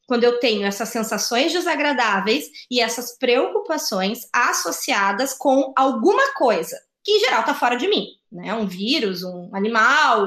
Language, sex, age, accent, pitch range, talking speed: Portuguese, female, 20-39, Brazilian, 195-265 Hz, 145 wpm